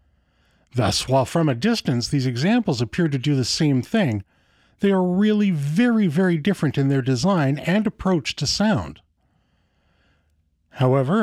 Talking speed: 145 wpm